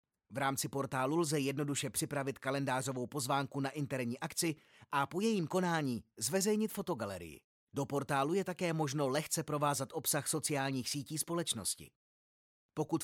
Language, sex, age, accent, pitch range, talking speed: Czech, male, 30-49, native, 135-165 Hz, 135 wpm